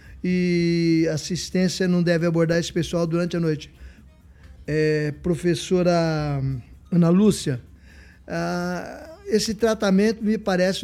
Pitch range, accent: 175-205 Hz, Brazilian